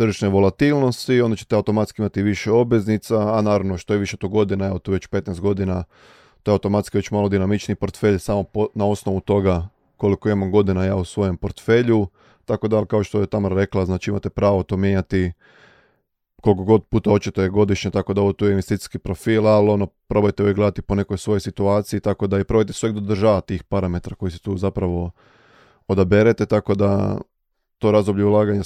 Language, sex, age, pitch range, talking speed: Croatian, male, 20-39, 100-110 Hz, 190 wpm